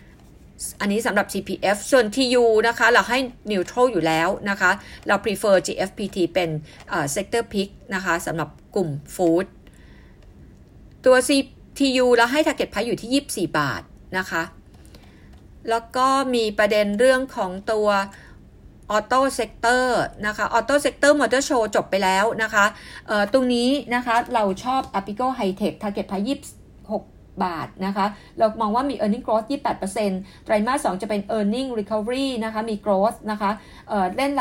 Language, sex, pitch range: Thai, female, 195-245 Hz